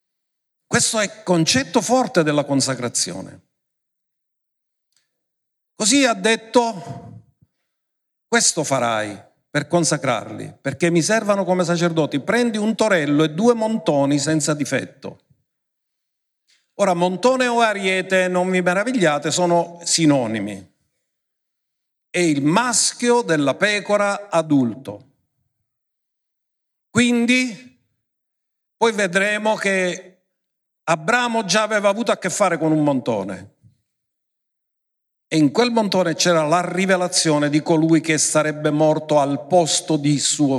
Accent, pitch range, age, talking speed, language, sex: native, 155-220 Hz, 50-69, 105 wpm, Italian, male